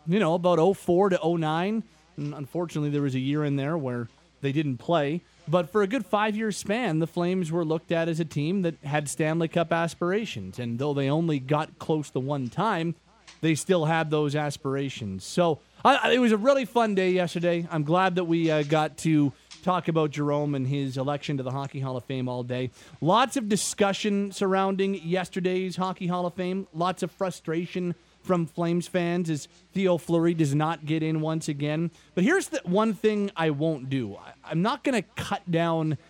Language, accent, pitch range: English, American, 150-180 Hz